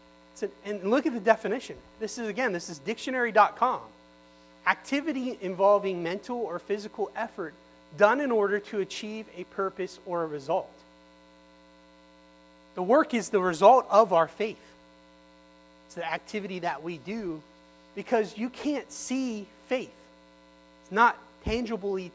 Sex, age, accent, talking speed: male, 30-49, American, 135 wpm